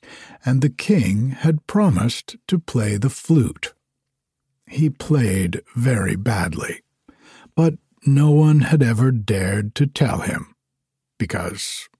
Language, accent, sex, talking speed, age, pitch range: English, American, male, 115 wpm, 60-79, 115-150 Hz